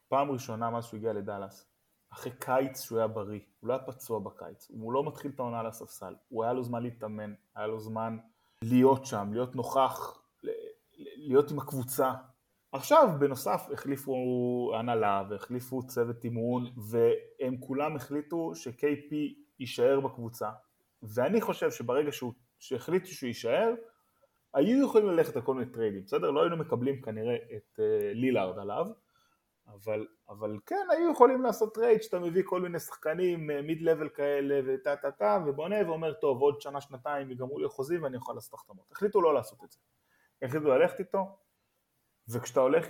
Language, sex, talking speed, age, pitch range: Hebrew, male, 160 wpm, 20-39, 115-165 Hz